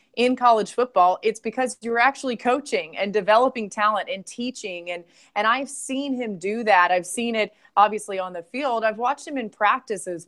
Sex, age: female, 20-39